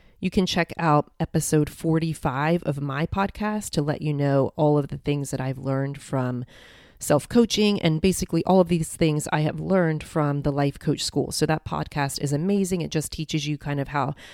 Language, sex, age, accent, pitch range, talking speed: English, female, 30-49, American, 145-175 Hz, 200 wpm